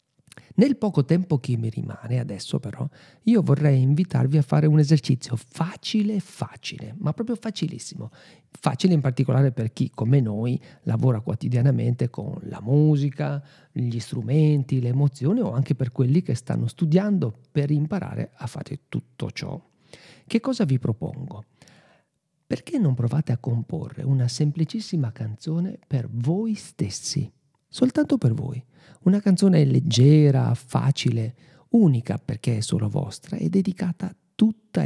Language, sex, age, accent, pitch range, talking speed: Italian, male, 50-69, native, 125-165 Hz, 135 wpm